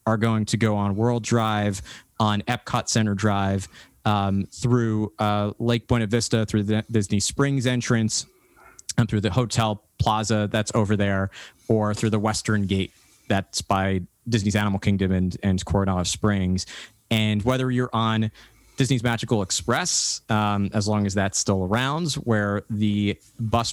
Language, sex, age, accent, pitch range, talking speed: English, male, 20-39, American, 105-120 Hz, 155 wpm